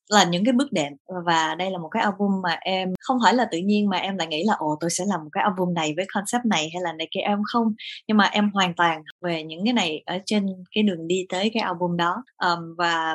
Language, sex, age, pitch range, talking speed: Vietnamese, female, 20-39, 175-225 Hz, 275 wpm